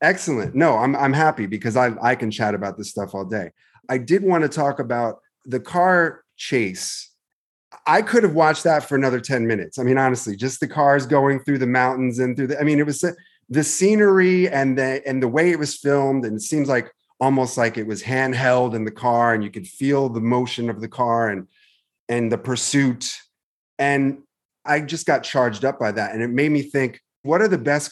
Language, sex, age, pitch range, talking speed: English, male, 30-49, 115-145 Hz, 220 wpm